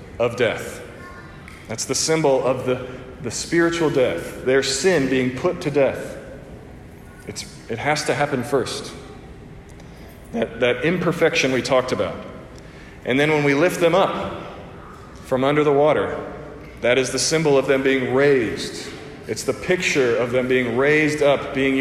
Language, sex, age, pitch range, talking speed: English, male, 40-59, 130-160 Hz, 155 wpm